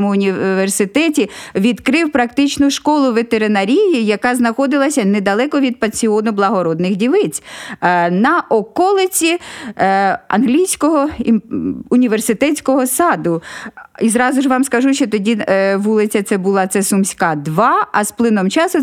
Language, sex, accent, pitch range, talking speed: Ukrainian, female, native, 210-275 Hz, 100 wpm